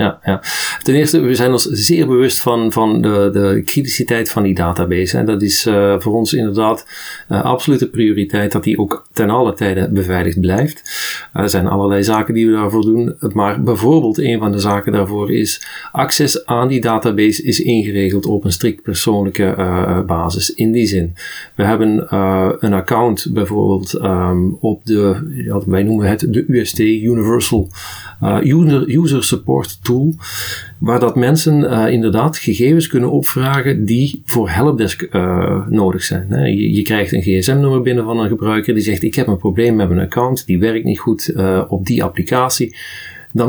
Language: Dutch